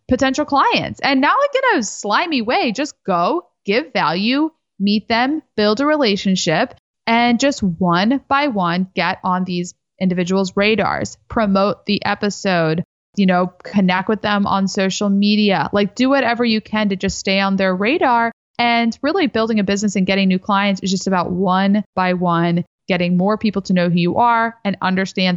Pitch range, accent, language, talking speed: 185-235 Hz, American, English, 175 wpm